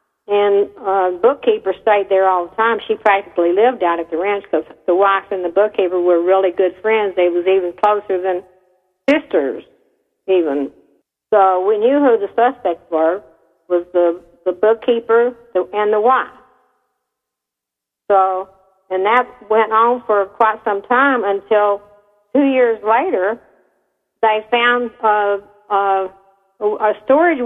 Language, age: English, 60-79